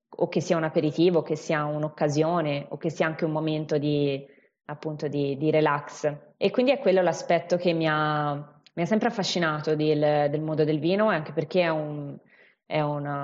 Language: Italian